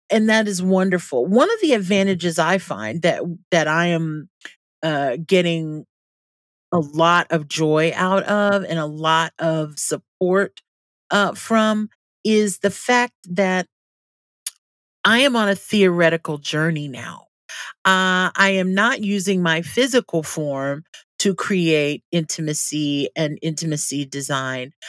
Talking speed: 130 wpm